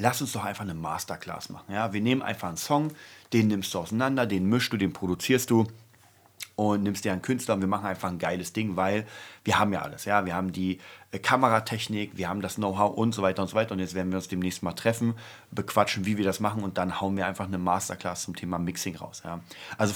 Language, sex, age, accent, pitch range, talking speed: German, male, 30-49, German, 95-115 Hz, 245 wpm